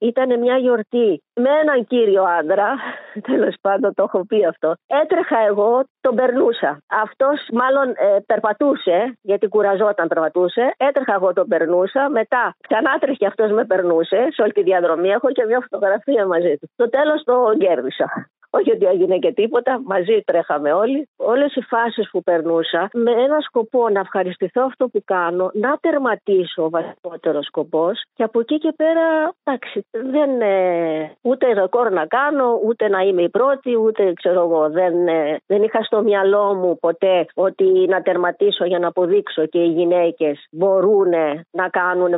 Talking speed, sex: 160 wpm, female